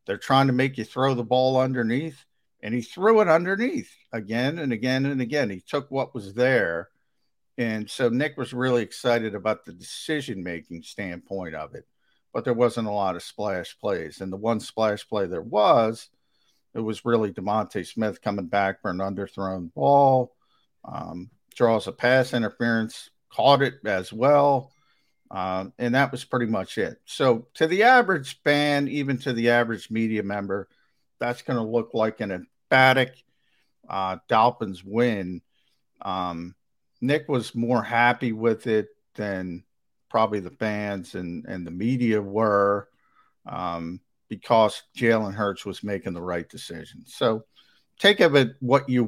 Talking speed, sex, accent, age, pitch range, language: 160 wpm, male, American, 50-69, 100-130 Hz, English